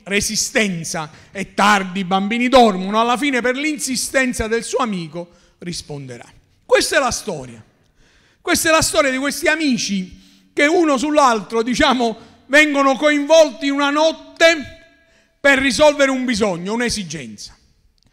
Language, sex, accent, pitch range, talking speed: Italian, male, native, 215-305 Hz, 125 wpm